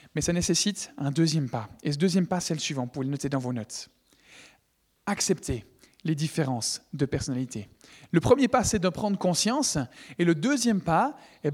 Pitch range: 150-205 Hz